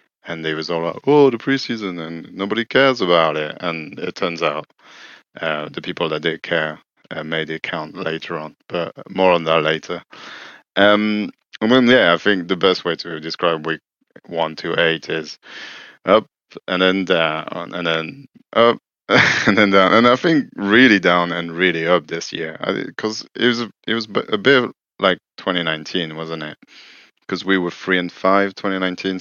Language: English